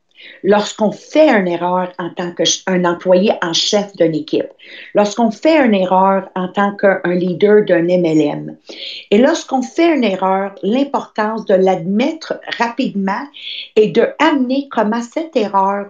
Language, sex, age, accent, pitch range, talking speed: English, female, 50-69, Canadian, 185-235 Hz, 145 wpm